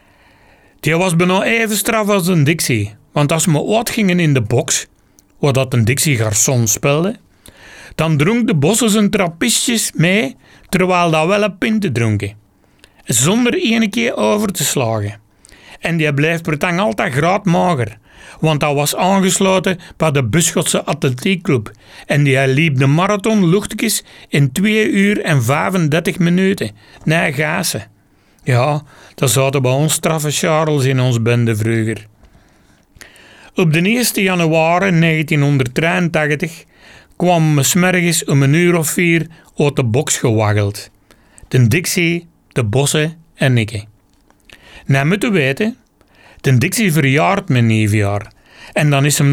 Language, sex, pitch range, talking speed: Dutch, male, 125-185 Hz, 140 wpm